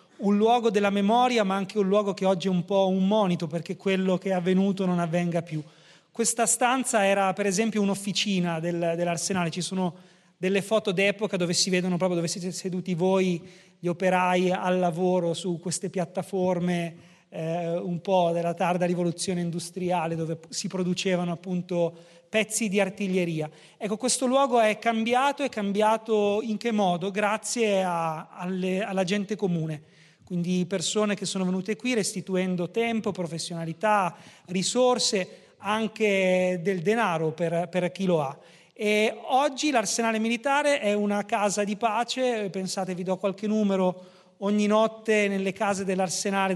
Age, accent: 30-49, native